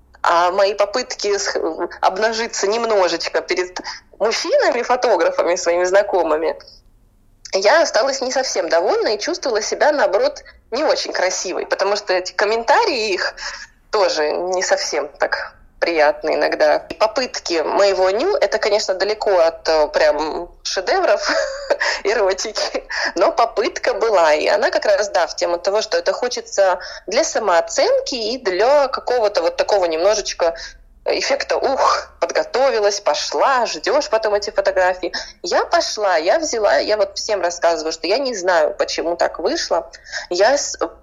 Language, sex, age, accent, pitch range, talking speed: Russian, female, 20-39, native, 180-270 Hz, 130 wpm